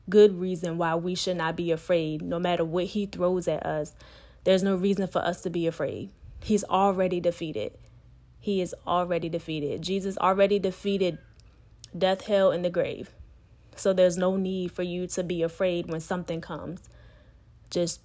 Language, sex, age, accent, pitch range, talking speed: English, female, 20-39, American, 175-215 Hz, 170 wpm